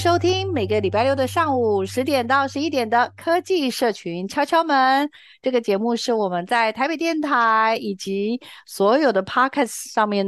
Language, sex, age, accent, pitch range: Chinese, female, 50-69, native, 195-280 Hz